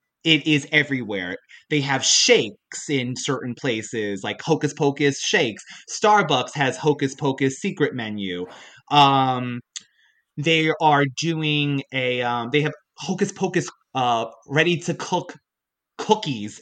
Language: English